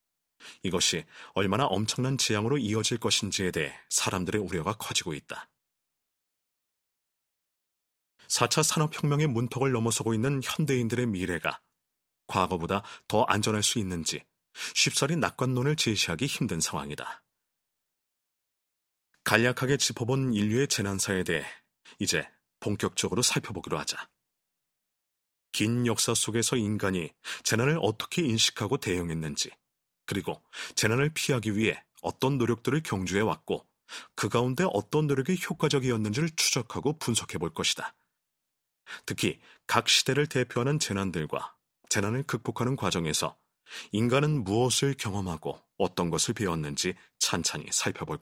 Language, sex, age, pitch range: Korean, male, 30-49, 95-130 Hz